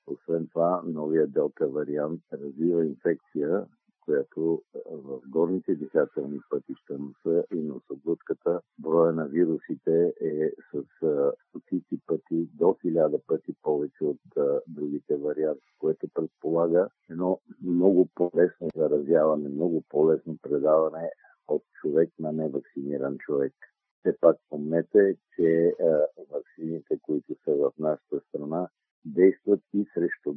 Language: Bulgarian